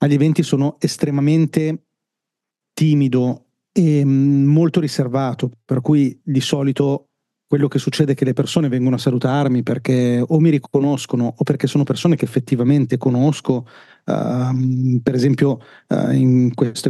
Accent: native